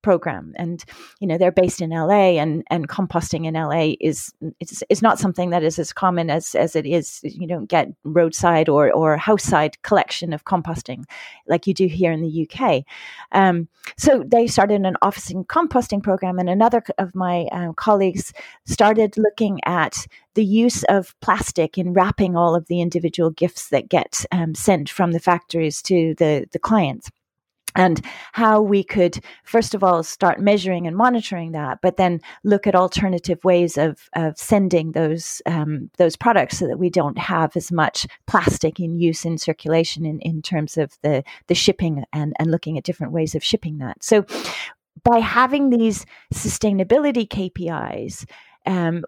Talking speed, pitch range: 175 wpm, 160-195 Hz